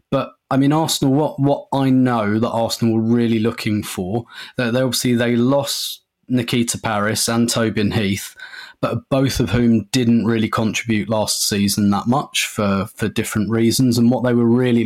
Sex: male